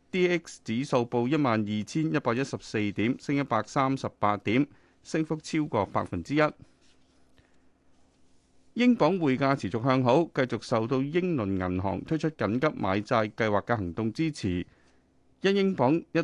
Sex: male